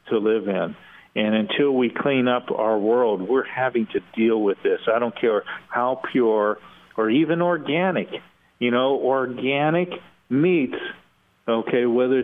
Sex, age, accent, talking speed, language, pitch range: male, 50-69, American, 145 wpm, English, 110-140 Hz